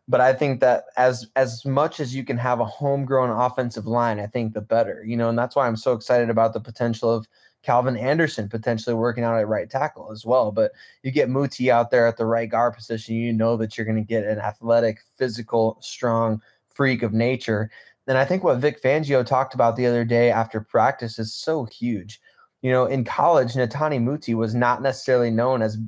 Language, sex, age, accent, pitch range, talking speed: English, male, 20-39, American, 115-130 Hz, 215 wpm